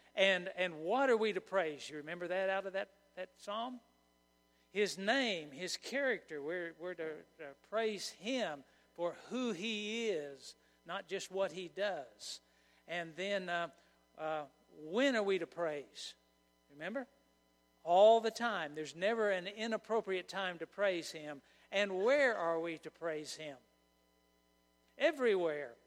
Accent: American